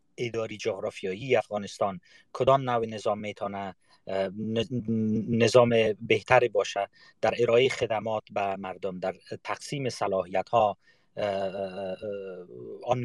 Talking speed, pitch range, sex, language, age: 90 wpm, 105-125 Hz, male, Persian, 30-49